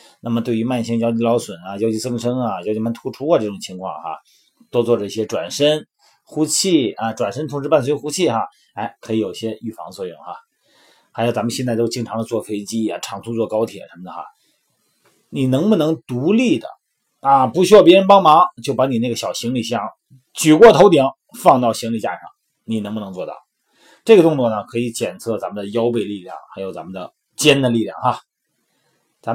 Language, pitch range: Chinese, 110-145 Hz